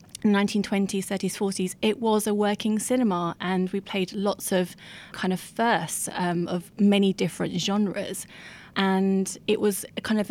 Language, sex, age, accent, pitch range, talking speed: English, female, 20-39, British, 180-200 Hz, 150 wpm